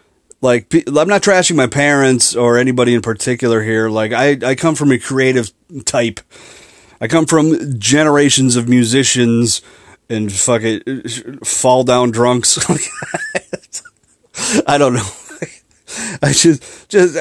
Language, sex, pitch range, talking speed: English, male, 120-140 Hz, 130 wpm